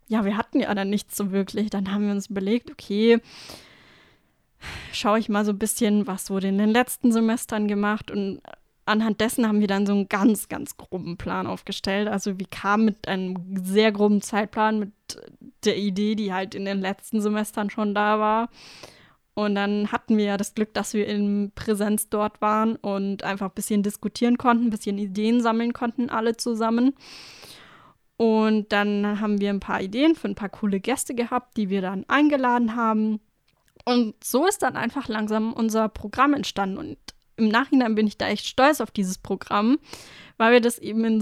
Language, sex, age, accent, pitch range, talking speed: English, female, 20-39, German, 205-230 Hz, 190 wpm